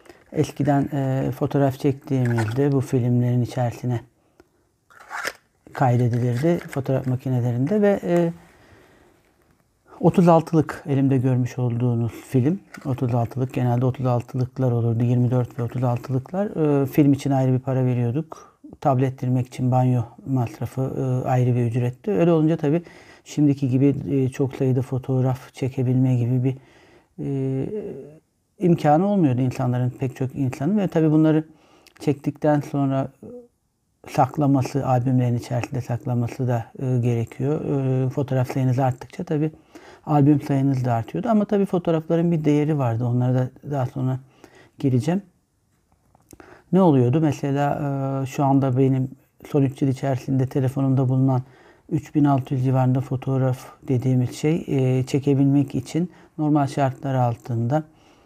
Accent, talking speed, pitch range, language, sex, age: native, 115 wpm, 125-150 Hz, Turkish, male, 60-79